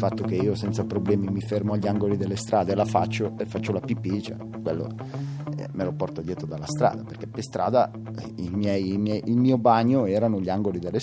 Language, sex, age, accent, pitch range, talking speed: Italian, male, 30-49, native, 95-115 Hz, 210 wpm